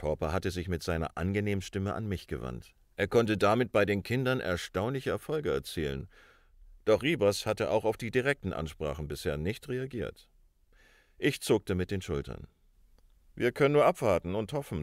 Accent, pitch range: German, 85-110 Hz